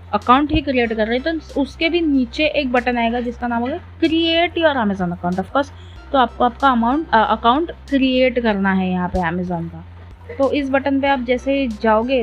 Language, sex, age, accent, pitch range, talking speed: Hindi, female, 20-39, native, 215-270 Hz, 200 wpm